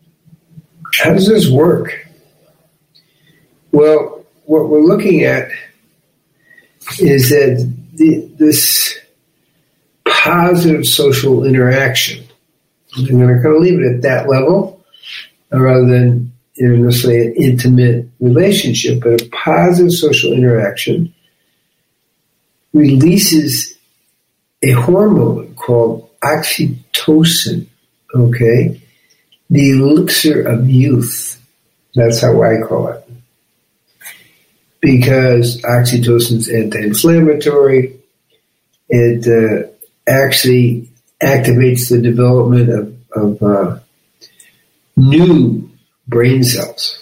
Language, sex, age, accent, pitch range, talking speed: English, male, 60-79, American, 120-155 Hz, 90 wpm